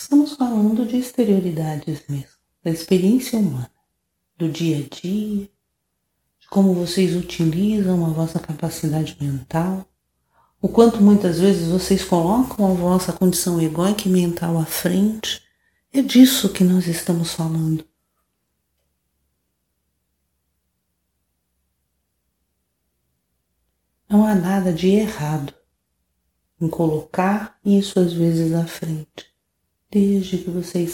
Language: Portuguese